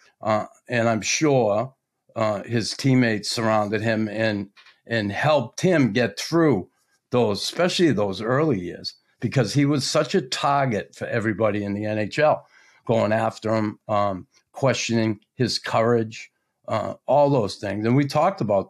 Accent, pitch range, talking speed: American, 105-130 Hz, 150 wpm